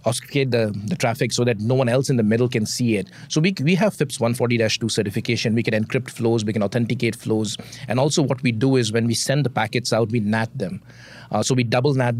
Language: English